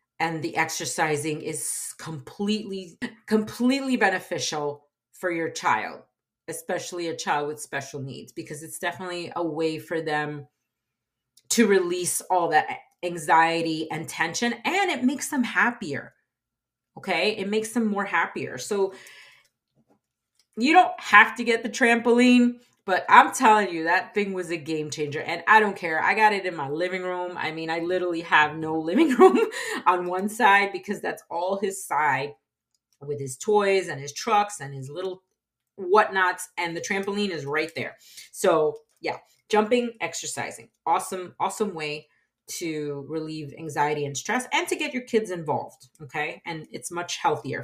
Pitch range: 155-215 Hz